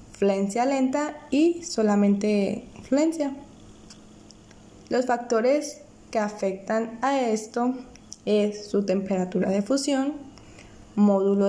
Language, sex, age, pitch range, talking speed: Spanish, female, 20-39, 195-255 Hz, 90 wpm